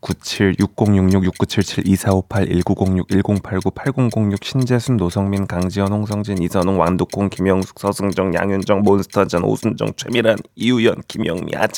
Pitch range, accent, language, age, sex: 105-175 Hz, native, Korean, 20-39, male